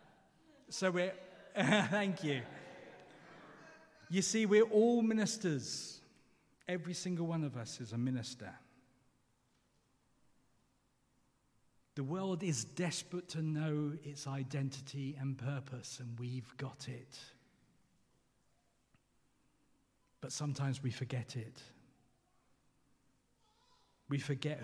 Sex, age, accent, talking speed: male, 40-59, British, 95 wpm